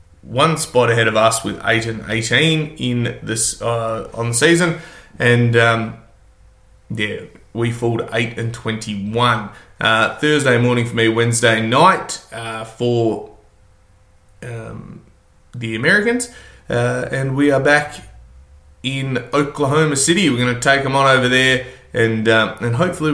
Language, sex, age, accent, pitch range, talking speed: English, male, 20-39, Australian, 115-135 Hz, 145 wpm